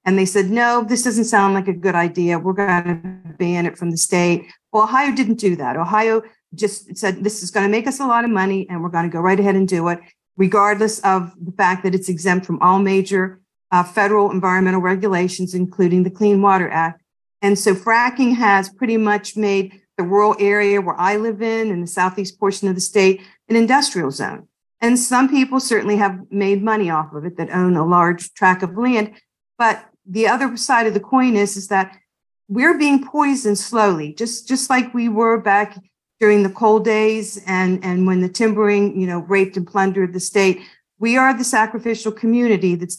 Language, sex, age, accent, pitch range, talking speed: English, female, 50-69, American, 185-220 Hz, 210 wpm